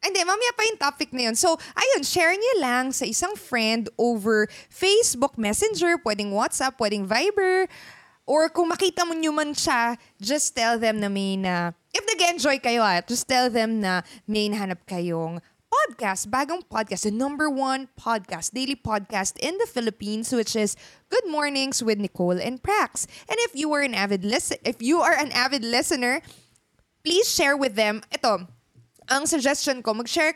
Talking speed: 165 wpm